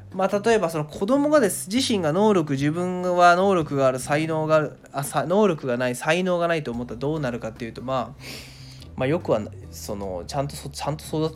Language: Japanese